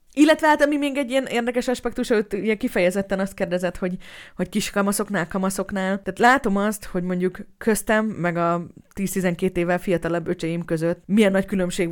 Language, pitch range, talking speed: Hungarian, 170-210 Hz, 165 wpm